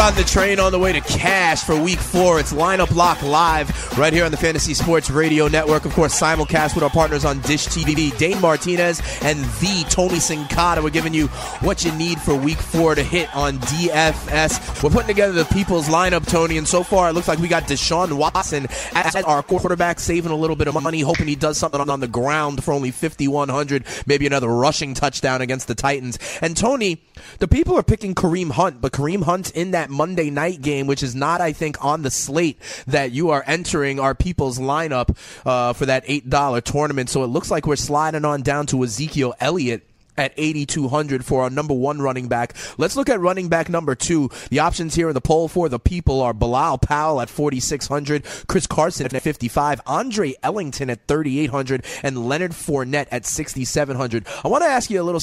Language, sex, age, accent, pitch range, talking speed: English, male, 30-49, American, 135-165 Hz, 210 wpm